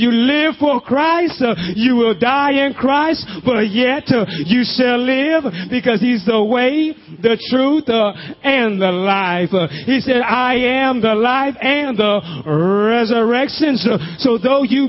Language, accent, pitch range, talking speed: English, American, 220-260 Hz, 155 wpm